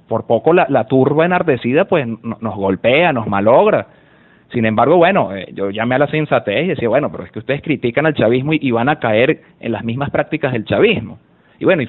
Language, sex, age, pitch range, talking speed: Spanish, male, 30-49, 130-190 Hz, 205 wpm